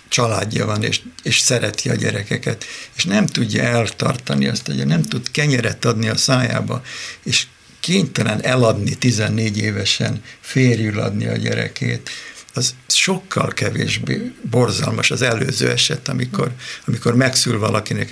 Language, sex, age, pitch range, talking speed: Hungarian, male, 60-79, 110-125 Hz, 130 wpm